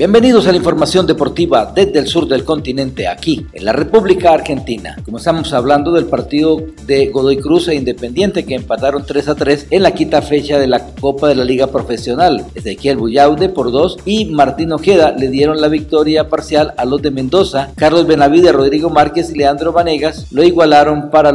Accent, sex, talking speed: Mexican, male, 185 wpm